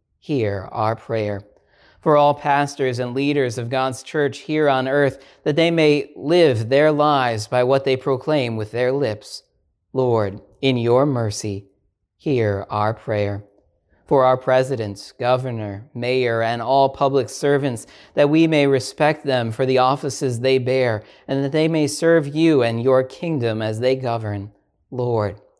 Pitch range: 110-145 Hz